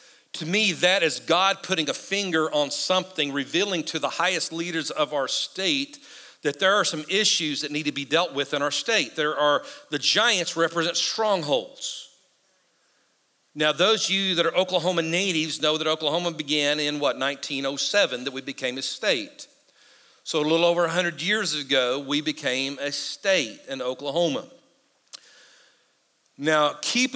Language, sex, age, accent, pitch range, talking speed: English, male, 50-69, American, 150-210 Hz, 160 wpm